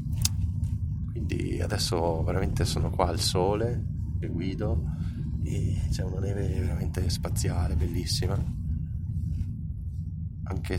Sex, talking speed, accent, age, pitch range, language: male, 85 wpm, native, 30-49, 85-100 Hz, Italian